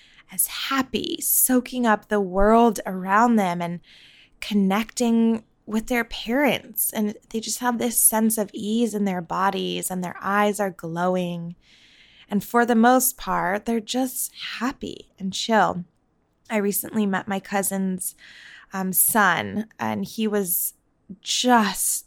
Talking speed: 135 wpm